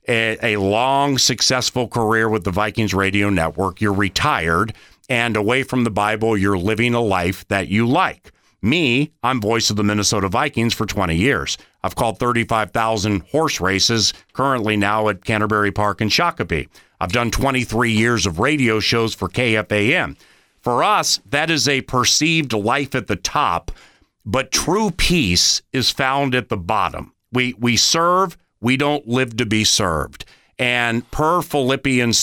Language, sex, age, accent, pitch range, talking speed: English, male, 40-59, American, 105-130 Hz, 155 wpm